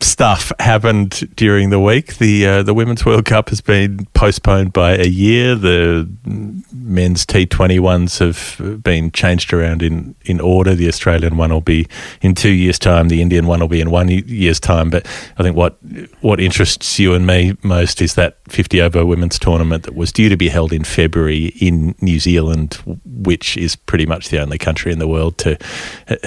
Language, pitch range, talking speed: English, 80-95 Hz, 190 wpm